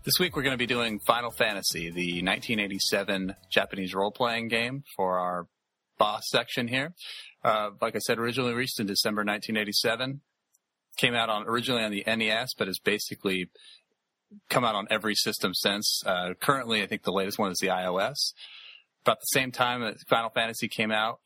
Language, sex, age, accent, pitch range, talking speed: English, male, 30-49, American, 95-125 Hz, 180 wpm